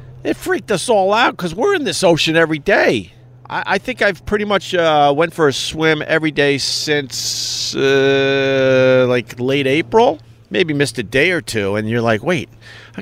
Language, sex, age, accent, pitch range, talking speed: English, male, 50-69, American, 110-150 Hz, 190 wpm